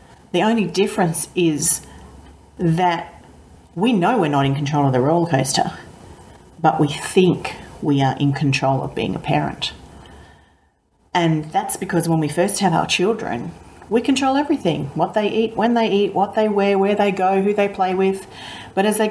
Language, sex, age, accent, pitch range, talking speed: English, female, 40-59, Australian, 150-190 Hz, 180 wpm